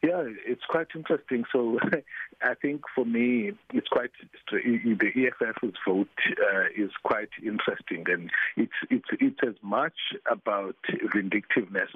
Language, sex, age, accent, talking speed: English, male, 50-69, South African, 130 wpm